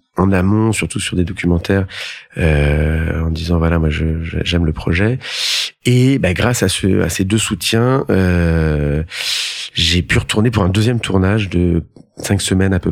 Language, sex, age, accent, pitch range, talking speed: French, male, 30-49, French, 85-110 Hz, 175 wpm